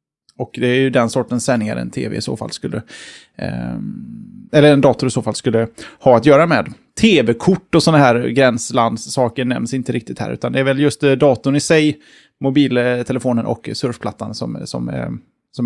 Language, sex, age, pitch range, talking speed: Swedish, male, 20-39, 120-155 Hz, 190 wpm